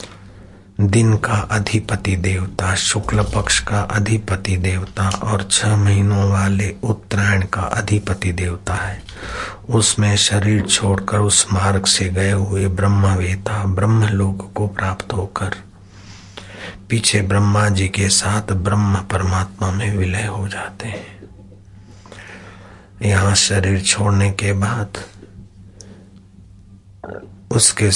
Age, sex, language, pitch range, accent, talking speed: 60-79, male, Hindi, 95-105 Hz, native, 105 wpm